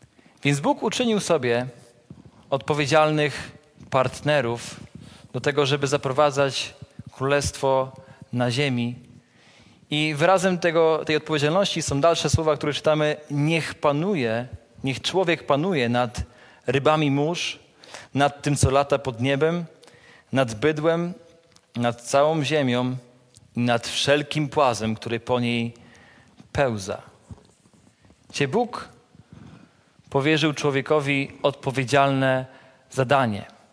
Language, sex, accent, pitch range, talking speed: Polish, male, native, 125-155 Hz, 100 wpm